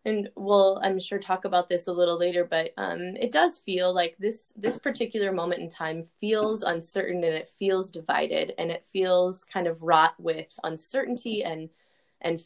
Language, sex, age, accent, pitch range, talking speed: English, female, 20-39, American, 170-215 Hz, 185 wpm